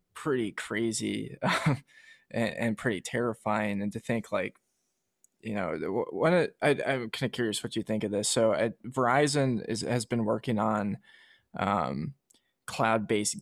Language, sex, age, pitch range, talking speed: English, male, 20-39, 105-120 Hz, 150 wpm